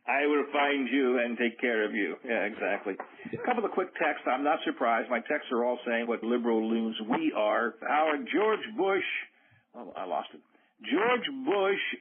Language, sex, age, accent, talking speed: English, male, 50-69, American, 195 wpm